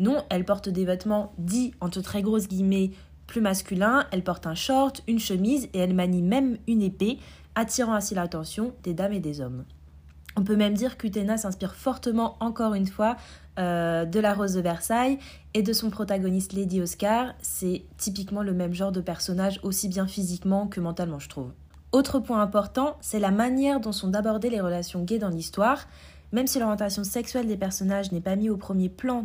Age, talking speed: 20-39, 195 wpm